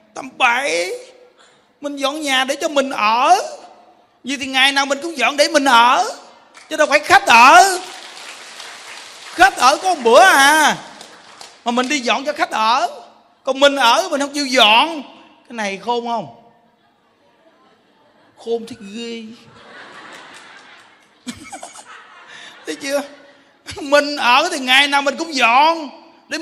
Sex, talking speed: male, 140 wpm